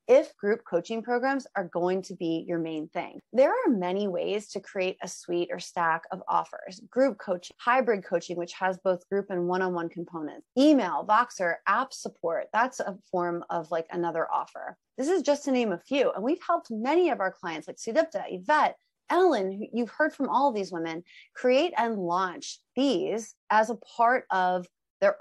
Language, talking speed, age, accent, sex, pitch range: English, 190 wpm, 30-49, American, female, 185-265 Hz